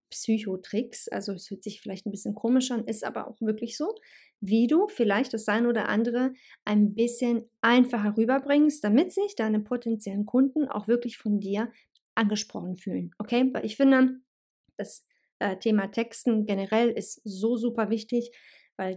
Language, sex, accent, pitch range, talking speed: German, female, German, 210-250 Hz, 160 wpm